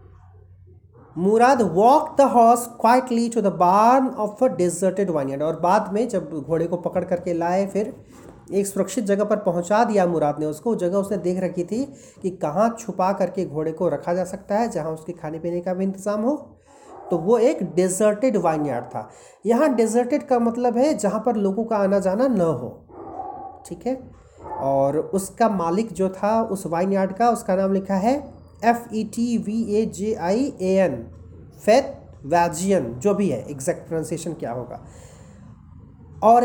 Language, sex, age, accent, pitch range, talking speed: Hindi, male, 40-59, native, 165-235 Hz, 175 wpm